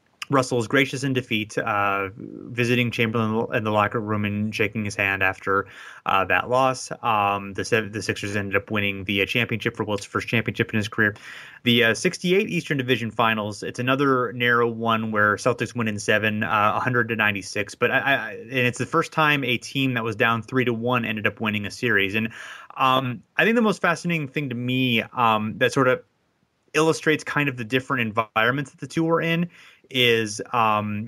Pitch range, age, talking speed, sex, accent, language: 110-130 Hz, 30-49, 200 wpm, male, American, English